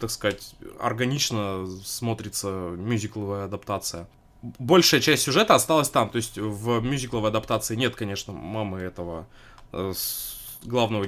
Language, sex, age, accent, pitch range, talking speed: Russian, male, 20-39, native, 105-140 Hz, 115 wpm